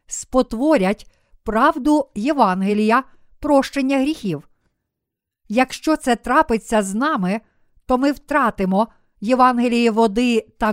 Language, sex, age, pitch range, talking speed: Ukrainian, female, 50-69, 215-270 Hz, 90 wpm